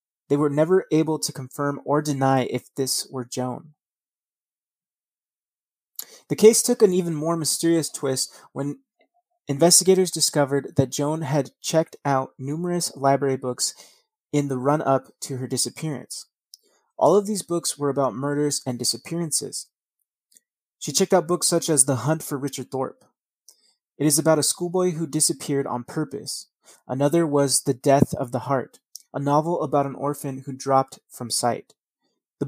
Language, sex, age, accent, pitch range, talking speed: English, male, 30-49, American, 135-160 Hz, 155 wpm